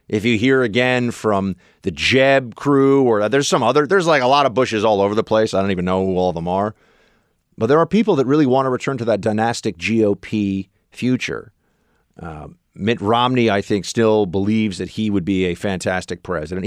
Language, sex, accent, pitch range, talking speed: English, male, American, 100-160 Hz, 215 wpm